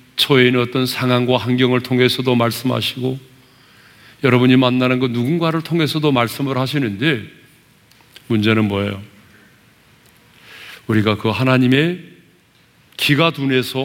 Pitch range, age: 120-155 Hz, 40-59